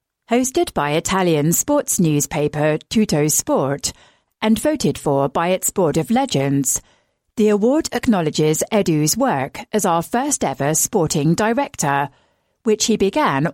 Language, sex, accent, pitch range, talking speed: English, female, British, 150-235 Hz, 125 wpm